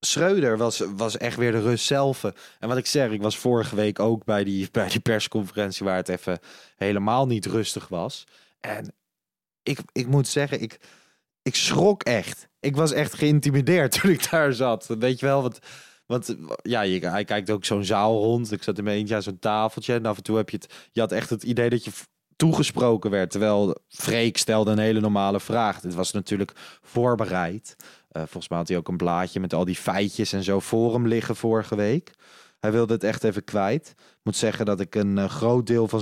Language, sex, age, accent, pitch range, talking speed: Dutch, male, 20-39, Dutch, 100-115 Hz, 215 wpm